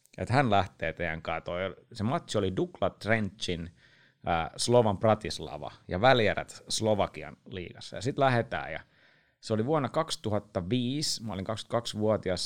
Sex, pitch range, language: male, 95-130 Hz, Finnish